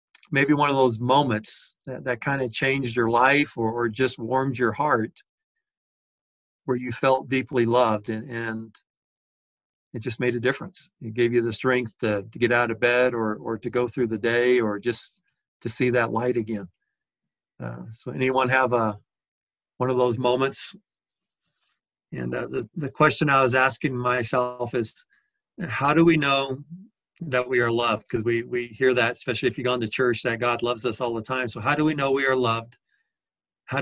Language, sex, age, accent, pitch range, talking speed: English, male, 40-59, American, 115-130 Hz, 195 wpm